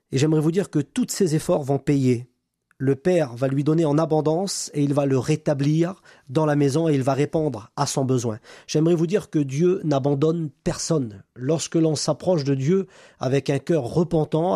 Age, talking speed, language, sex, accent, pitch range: 40-59, 200 wpm, French, male, French, 135-165 Hz